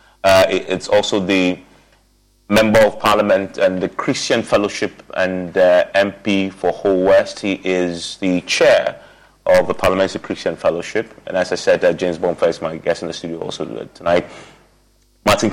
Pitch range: 90-110 Hz